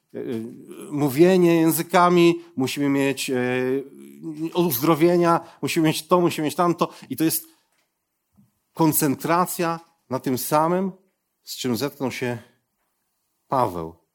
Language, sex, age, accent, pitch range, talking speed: Polish, male, 40-59, native, 100-145 Hz, 100 wpm